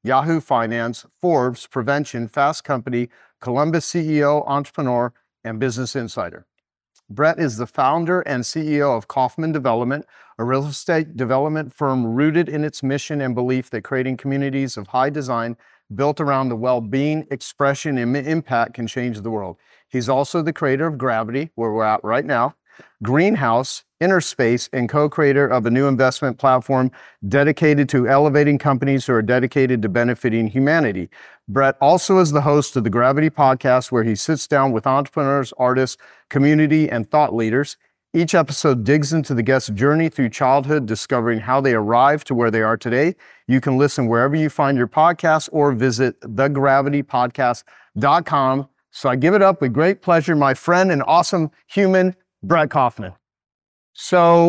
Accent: American